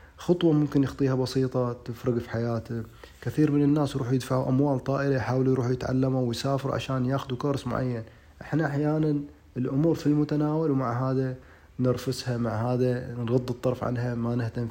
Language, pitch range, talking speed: Arabic, 110-130 Hz, 150 wpm